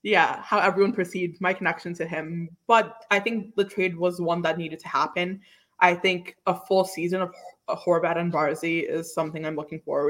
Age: 20-39